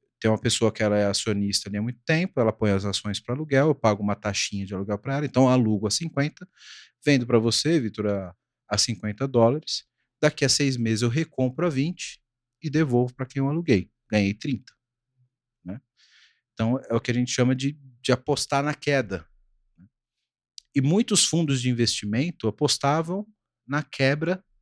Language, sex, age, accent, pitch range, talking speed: Portuguese, male, 40-59, Brazilian, 105-140 Hz, 185 wpm